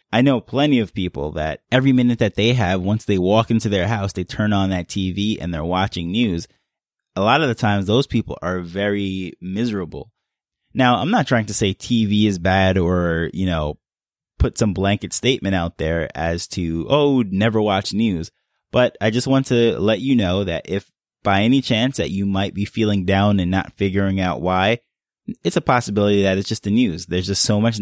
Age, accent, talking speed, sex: 20-39, American, 205 wpm, male